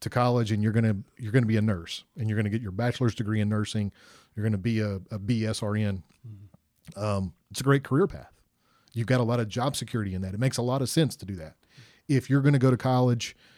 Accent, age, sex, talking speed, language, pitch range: American, 40-59, male, 265 wpm, English, 110-130 Hz